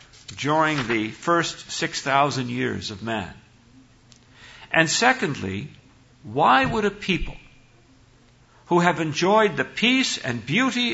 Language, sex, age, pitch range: English, male, 60-79, 120-165 Hz